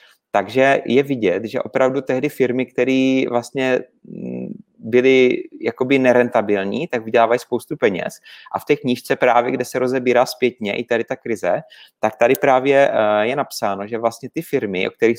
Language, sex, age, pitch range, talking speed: Czech, male, 30-49, 115-130 Hz, 160 wpm